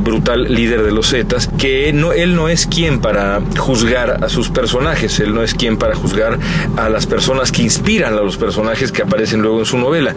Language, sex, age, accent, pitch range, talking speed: Spanish, male, 40-59, Mexican, 110-145 Hz, 205 wpm